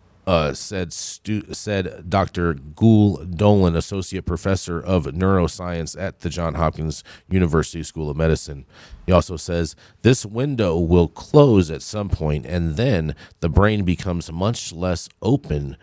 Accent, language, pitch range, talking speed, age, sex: American, English, 90-115 Hz, 135 wpm, 40-59, male